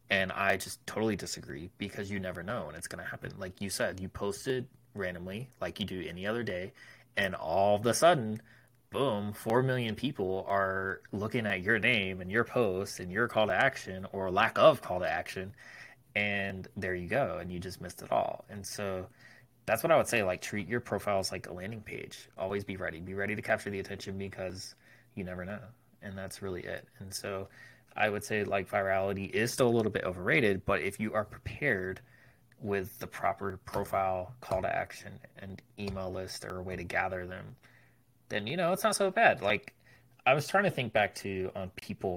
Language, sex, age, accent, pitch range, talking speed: English, male, 20-39, American, 95-115 Hz, 210 wpm